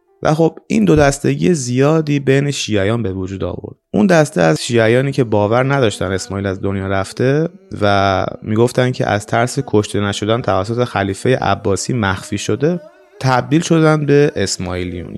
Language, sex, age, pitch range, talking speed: English, male, 30-49, 100-140 Hz, 150 wpm